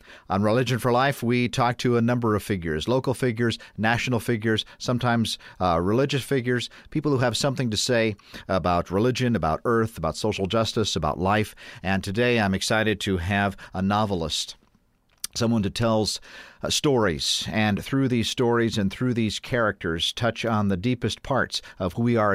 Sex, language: male, English